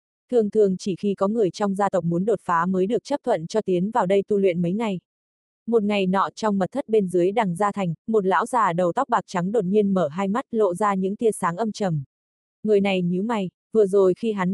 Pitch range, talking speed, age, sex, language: 185-225 Hz, 255 wpm, 20-39, female, Vietnamese